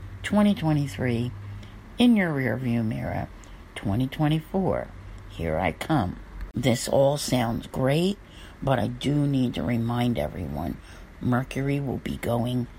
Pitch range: 80-125 Hz